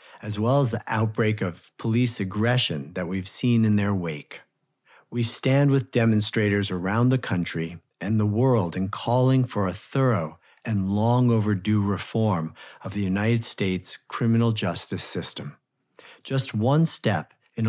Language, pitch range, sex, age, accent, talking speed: English, 95-120 Hz, male, 50-69, American, 145 wpm